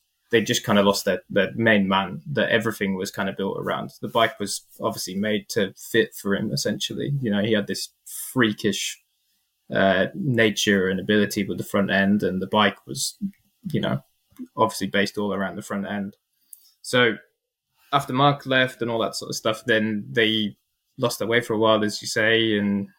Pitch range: 100-120 Hz